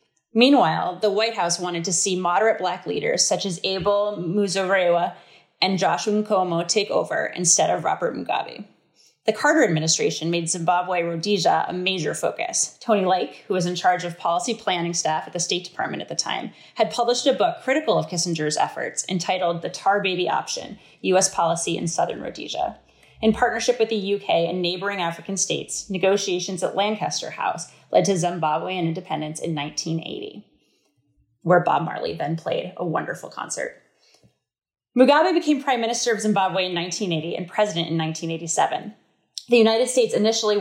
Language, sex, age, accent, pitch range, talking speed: English, female, 30-49, American, 170-215 Hz, 165 wpm